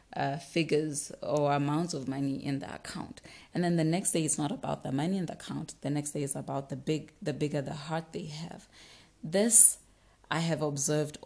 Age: 30-49